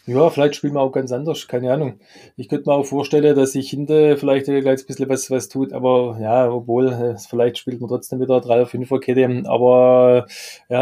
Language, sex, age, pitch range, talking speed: German, male, 20-39, 125-145 Hz, 235 wpm